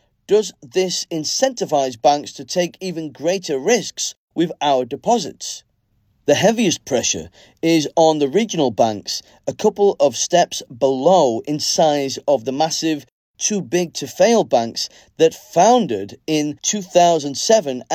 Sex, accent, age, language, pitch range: male, British, 30-49, Chinese, 135-180 Hz